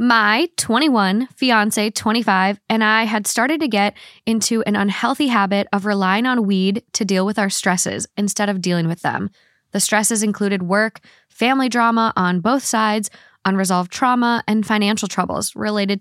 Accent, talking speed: American, 160 wpm